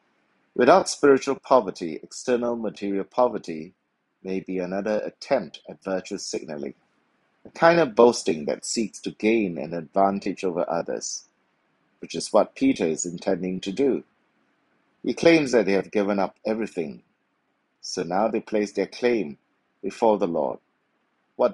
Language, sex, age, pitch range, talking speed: English, male, 60-79, 95-120 Hz, 140 wpm